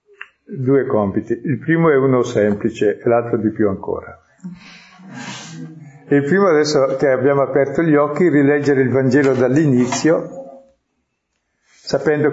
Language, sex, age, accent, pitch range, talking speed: Italian, male, 50-69, native, 115-145 Hz, 125 wpm